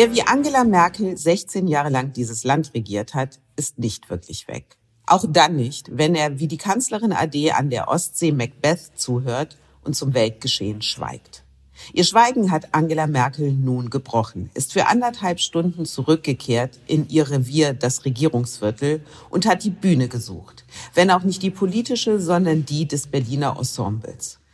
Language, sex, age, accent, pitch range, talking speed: German, female, 50-69, German, 120-160 Hz, 160 wpm